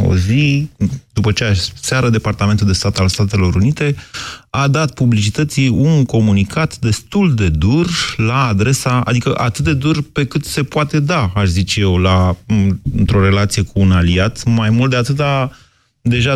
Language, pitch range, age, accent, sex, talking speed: Romanian, 100-140 Hz, 30-49, native, male, 165 wpm